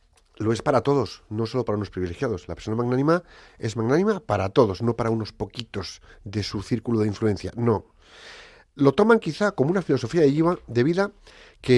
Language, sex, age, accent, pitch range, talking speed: Spanish, male, 40-59, Spanish, 105-150 Hz, 180 wpm